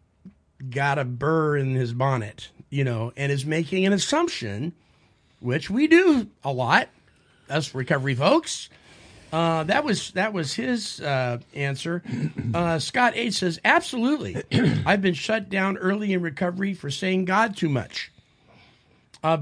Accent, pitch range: American, 140-195 Hz